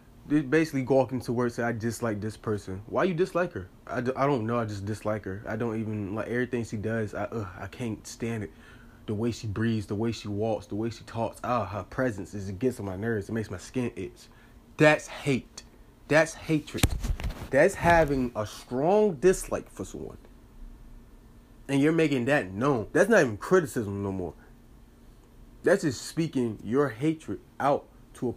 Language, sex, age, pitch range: English, male, 30-49, 110-130 Hz